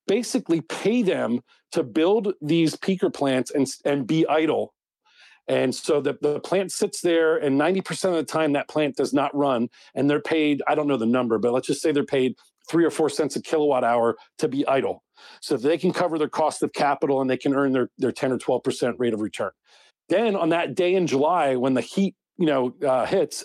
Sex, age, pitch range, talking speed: male, 40-59, 130-165 Hz, 220 wpm